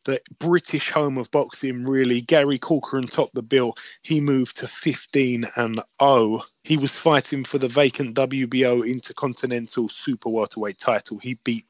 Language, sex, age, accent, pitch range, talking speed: English, male, 20-39, British, 120-145 Hz, 155 wpm